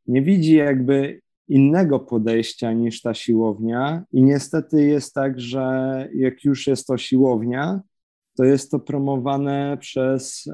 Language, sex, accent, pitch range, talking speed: Polish, male, native, 120-140 Hz, 130 wpm